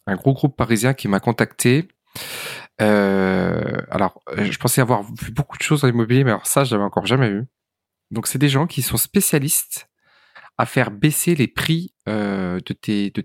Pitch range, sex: 105-140 Hz, male